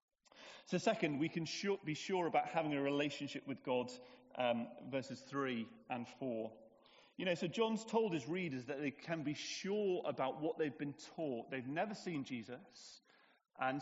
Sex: male